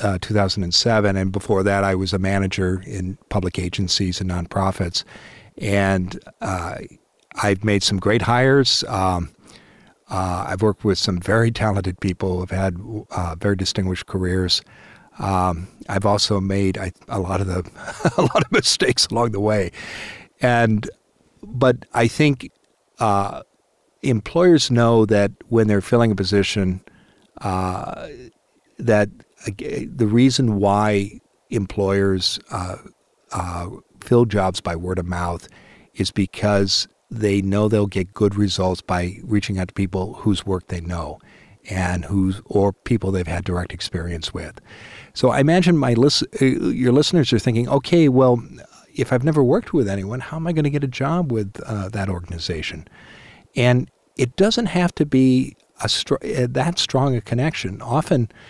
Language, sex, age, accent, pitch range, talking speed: English, male, 50-69, American, 95-120 Hz, 150 wpm